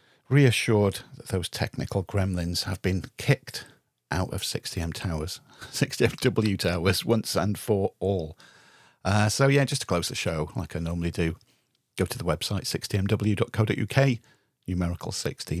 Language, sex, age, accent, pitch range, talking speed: English, male, 40-59, British, 95-120 Hz, 140 wpm